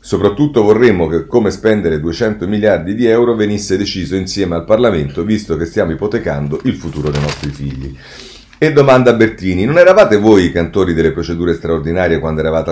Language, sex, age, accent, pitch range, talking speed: Italian, male, 40-59, native, 80-105 Hz, 165 wpm